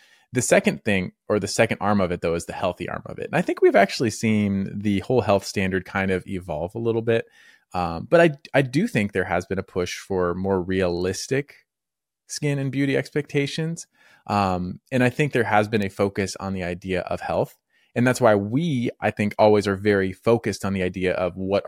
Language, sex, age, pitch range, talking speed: English, male, 20-39, 95-120 Hz, 220 wpm